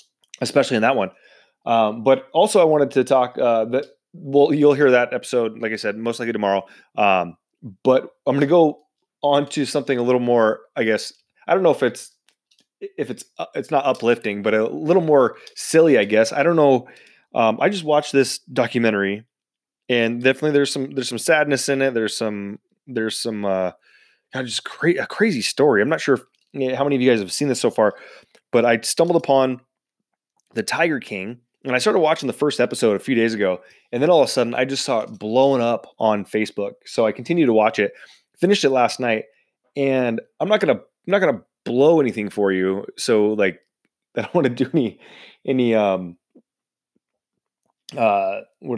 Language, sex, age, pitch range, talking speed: English, male, 20-39, 110-140 Hz, 205 wpm